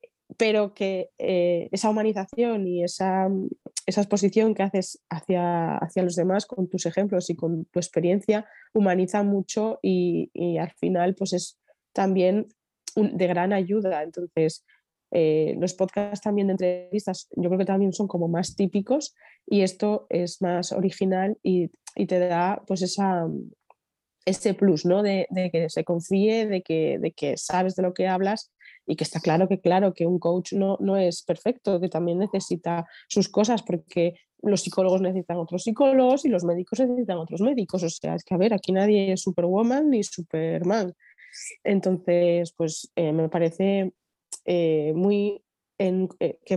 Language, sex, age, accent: Spanish, female, 20-39, Spanish